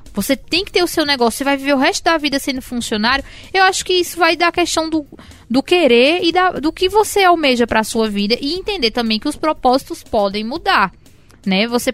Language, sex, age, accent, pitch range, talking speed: Portuguese, female, 20-39, Brazilian, 210-295 Hz, 235 wpm